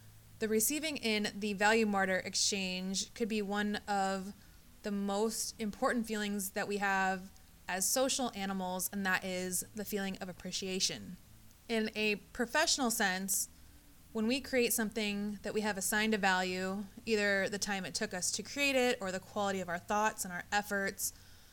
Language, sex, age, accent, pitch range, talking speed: English, female, 20-39, American, 185-215 Hz, 165 wpm